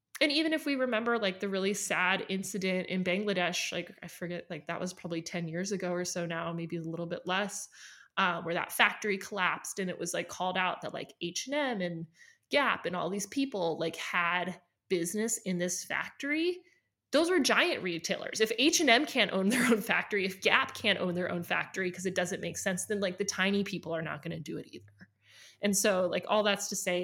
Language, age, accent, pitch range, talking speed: English, 20-39, American, 175-205 Hz, 225 wpm